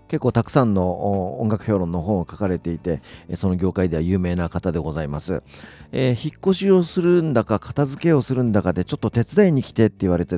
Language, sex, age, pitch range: Japanese, male, 40-59, 90-130 Hz